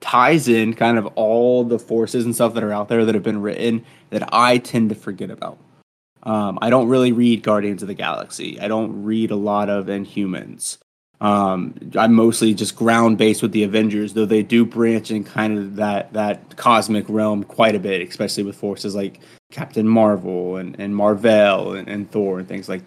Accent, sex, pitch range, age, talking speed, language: American, male, 105-120 Hz, 20-39, 200 wpm, English